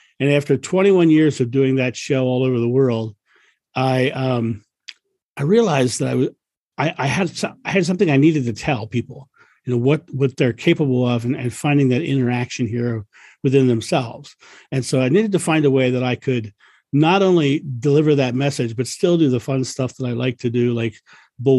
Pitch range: 120-140 Hz